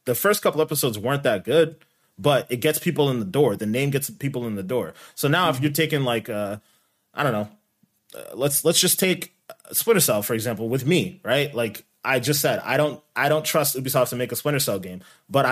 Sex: male